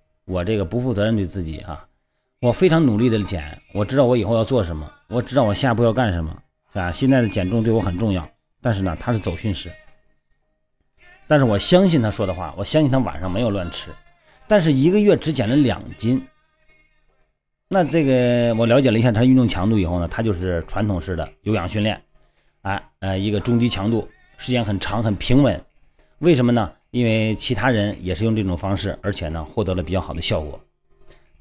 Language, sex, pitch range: Chinese, male, 95-135 Hz